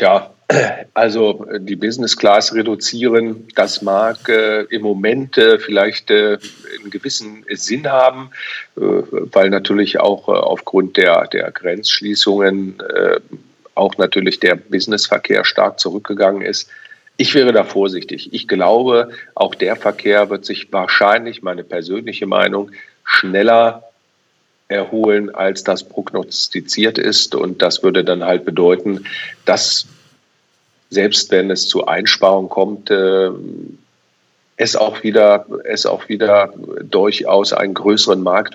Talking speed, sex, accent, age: 125 wpm, male, German, 50-69